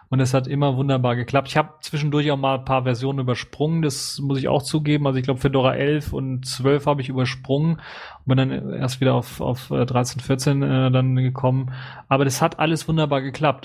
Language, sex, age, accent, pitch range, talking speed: German, male, 30-49, German, 120-135 Hz, 210 wpm